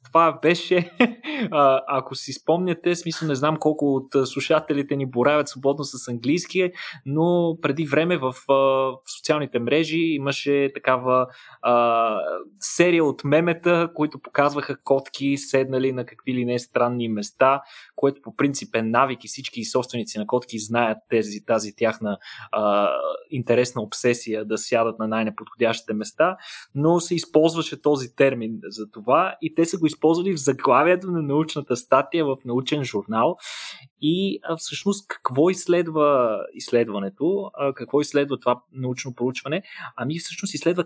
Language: Bulgarian